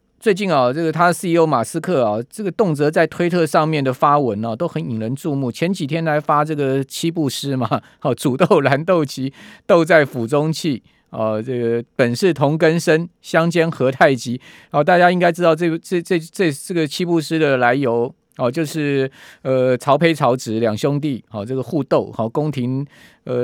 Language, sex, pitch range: Chinese, male, 130-170 Hz